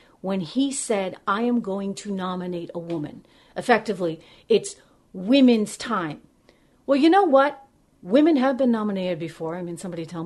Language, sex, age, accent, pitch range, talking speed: English, female, 40-59, American, 195-270 Hz, 160 wpm